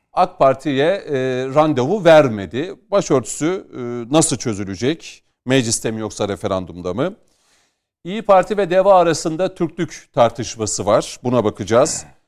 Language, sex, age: Turkish, male, 40-59